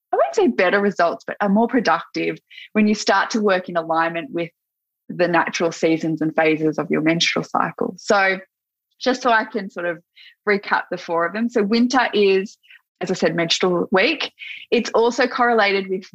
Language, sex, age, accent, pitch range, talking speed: English, female, 20-39, Australian, 165-215 Hz, 190 wpm